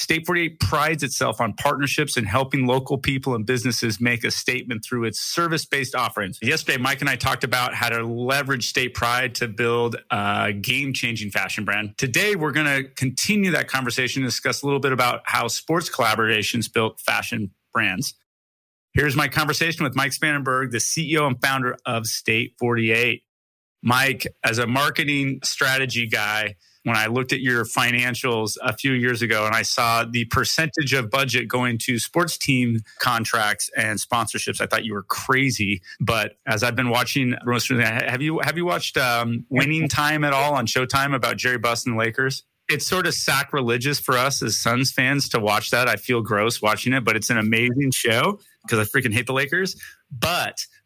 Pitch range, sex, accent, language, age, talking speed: 115-140 Hz, male, American, English, 30-49, 185 wpm